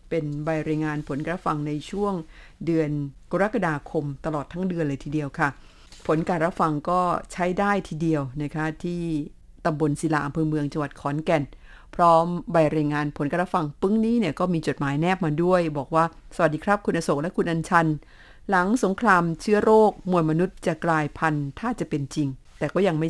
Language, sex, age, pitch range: Thai, female, 50-69, 155-185 Hz